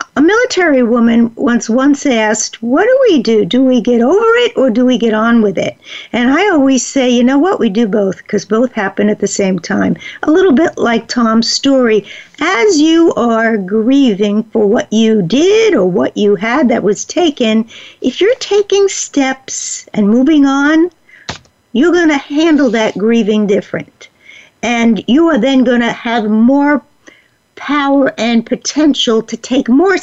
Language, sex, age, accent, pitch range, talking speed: English, female, 60-79, American, 220-295 Hz, 175 wpm